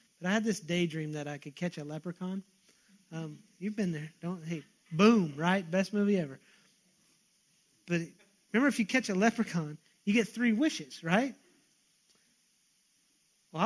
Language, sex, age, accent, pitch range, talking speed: English, male, 30-49, American, 185-245 Hz, 155 wpm